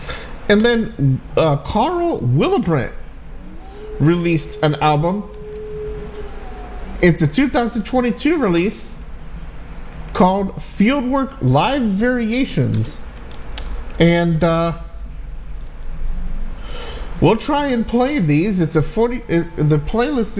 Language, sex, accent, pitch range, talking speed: English, male, American, 145-215 Hz, 85 wpm